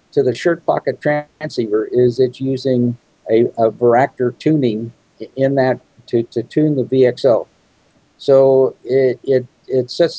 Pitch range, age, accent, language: 120-145 Hz, 50-69, American, English